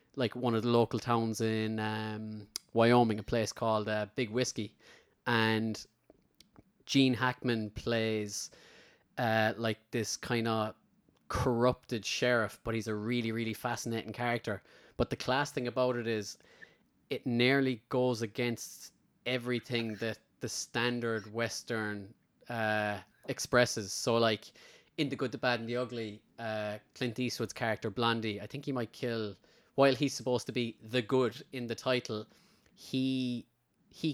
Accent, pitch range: Irish, 110-125 Hz